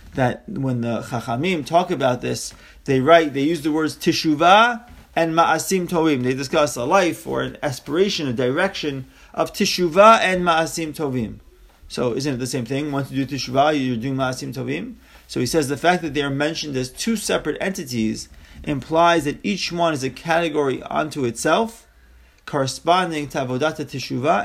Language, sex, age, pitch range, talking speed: English, male, 30-49, 130-175 Hz, 175 wpm